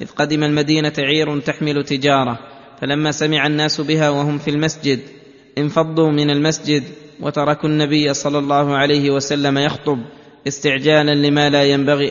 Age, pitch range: 20-39, 135-150 Hz